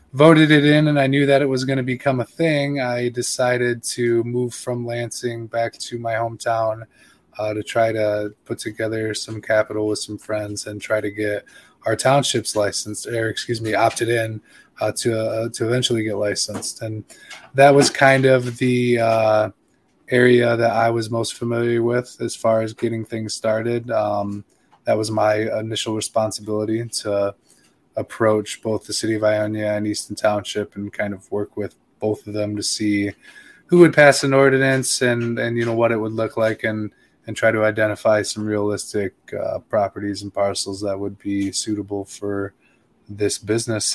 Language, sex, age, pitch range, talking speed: English, male, 20-39, 105-120 Hz, 180 wpm